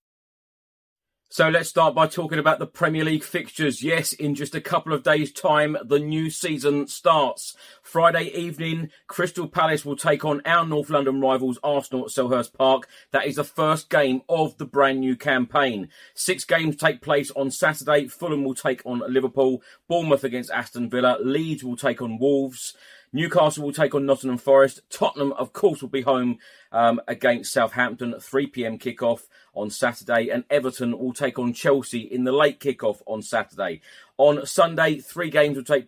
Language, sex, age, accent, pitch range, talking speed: English, male, 30-49, British, 130-155 Hz, 175 wpm